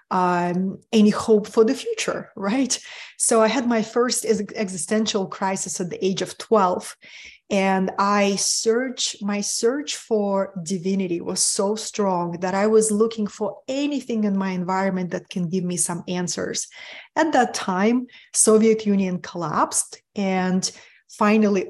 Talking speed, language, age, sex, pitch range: 135 wpm, English, 20-39, female, 190-240 Hz